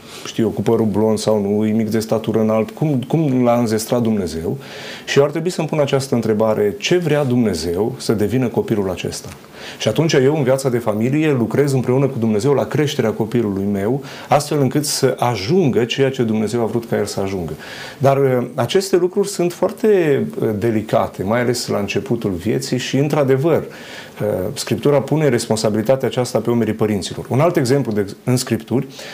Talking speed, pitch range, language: 175 wpm, 115-140 Hz, Romanian